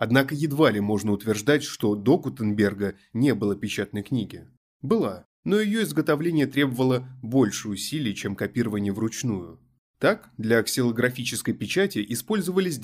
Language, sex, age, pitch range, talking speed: Russian, male, 20-39, 105-145 Hz, 125 wpm